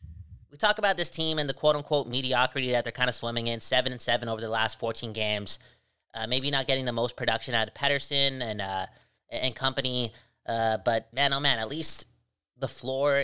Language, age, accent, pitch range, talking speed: English, 20-39, American, 120-145 Hz, 215 wpm